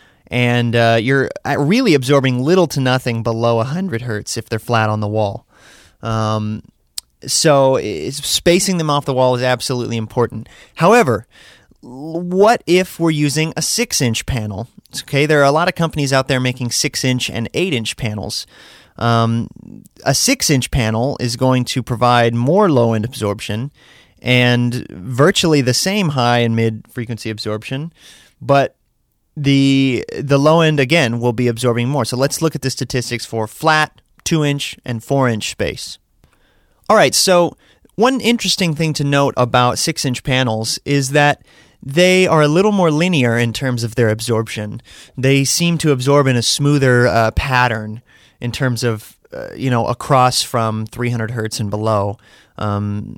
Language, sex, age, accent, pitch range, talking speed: English, male, 30-49, American, 115-150 Hz, 155 wpm